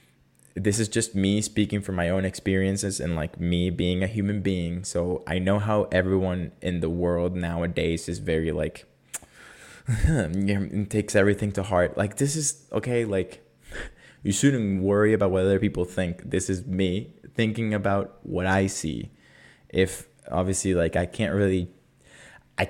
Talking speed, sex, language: 160 wpm, male, English